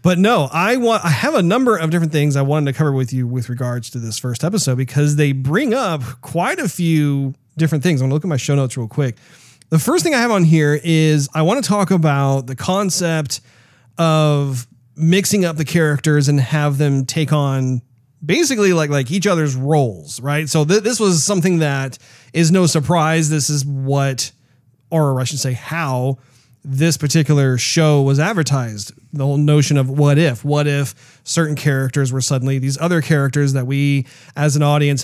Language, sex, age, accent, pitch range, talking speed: English, male, 40-59, American, 130-160 Hz, 200 wpm